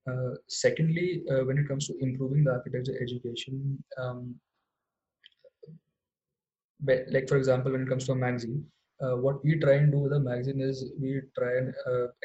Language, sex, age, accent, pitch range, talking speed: English, male, 20-39, Indian, 125-145 Hz, 170 wpm